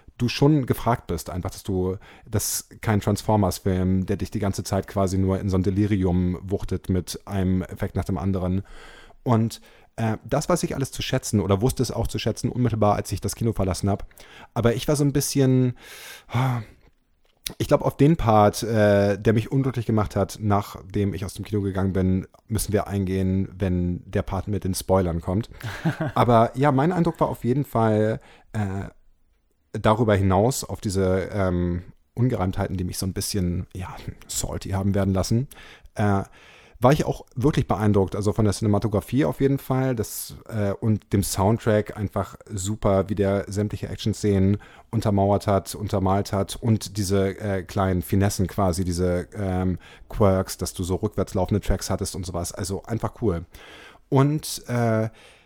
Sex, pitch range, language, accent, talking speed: male, 95-115 Hz, German, German, 170 wpm